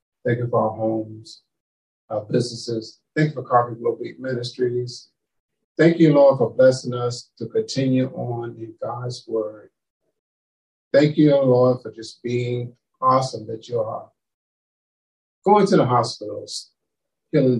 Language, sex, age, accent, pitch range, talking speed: English, male, 50-69, American, 115-135 Hz, 140 wpm